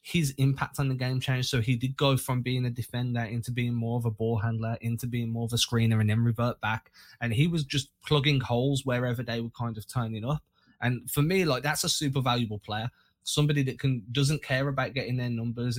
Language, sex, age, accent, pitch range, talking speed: English, male, 20-39, British, 115-140 Hz, 235 wpm